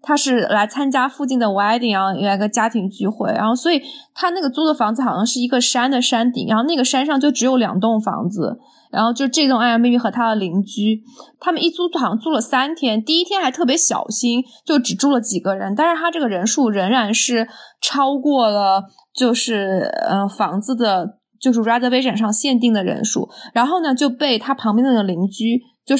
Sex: female